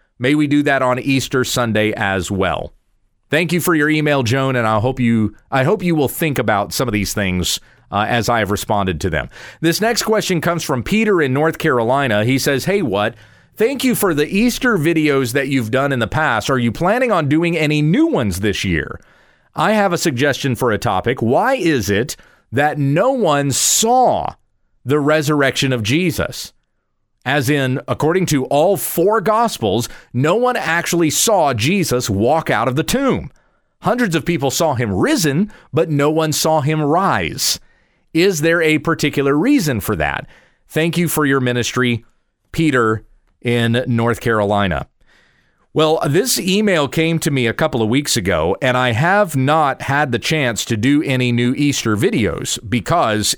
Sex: male